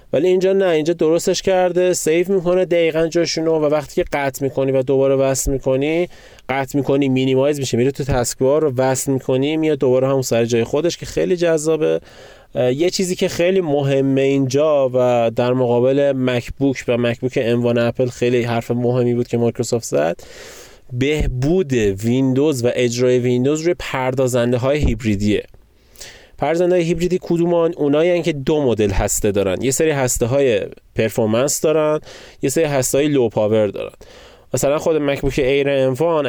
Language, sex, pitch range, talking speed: Persian, male, 125-155 Hz, 160 wpm